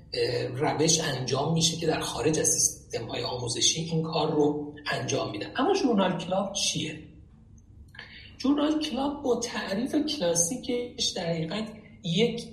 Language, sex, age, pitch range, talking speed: Persian, male, 40-59, 155-205 Hz, 125 wpm